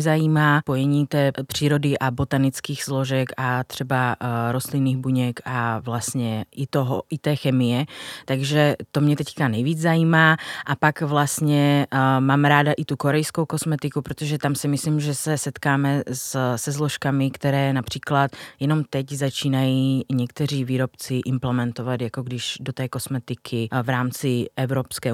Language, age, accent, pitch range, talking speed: Czech, 30-49, native, 125-145 Hz, 140 wpm